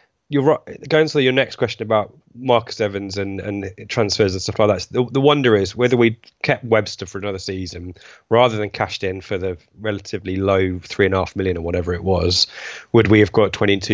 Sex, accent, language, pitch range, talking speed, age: male, British, English, 95-115 Hz, 200 wpm, 20-39